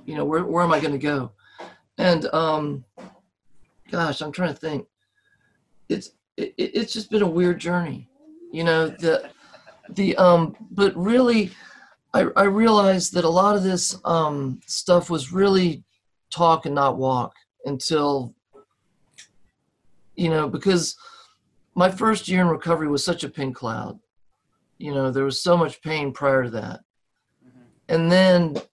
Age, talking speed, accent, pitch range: 50-69, 155 wpm, American, 140-180 Hz